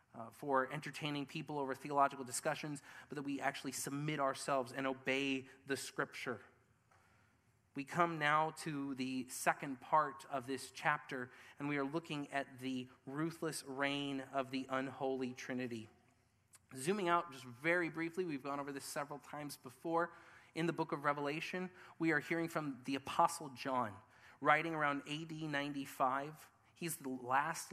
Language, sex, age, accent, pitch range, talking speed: English, male, 30-49, American, 130-150 Hz, 150 wpm